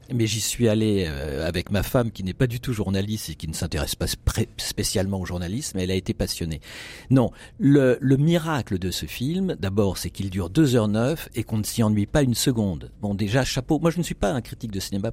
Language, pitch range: French, 105-135 Hz